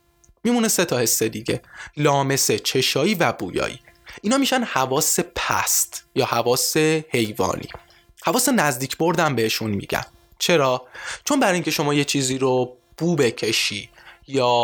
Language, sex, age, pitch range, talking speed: Persian, male, 20-39, 115-170 Hz, 130 wpm